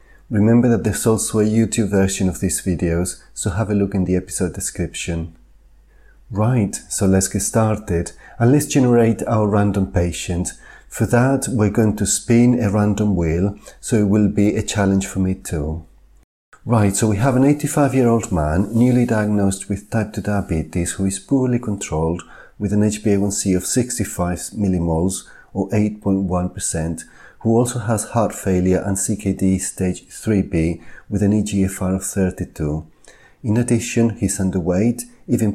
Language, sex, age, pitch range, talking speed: English, male, 40-59, 90-110 Hz, 155 wpm